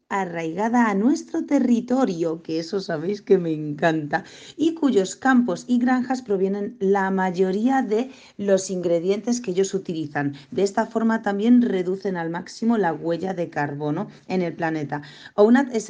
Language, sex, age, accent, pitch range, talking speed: Spanish, female, 40-59, Spanish, 170-215 Hz, 145 wpm